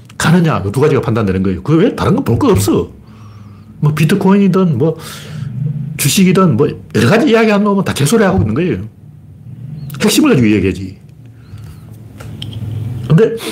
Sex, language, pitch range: male, Korean, 105-155 Hz